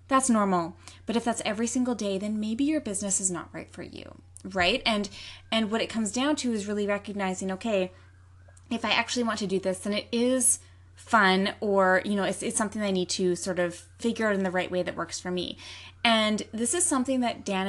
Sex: female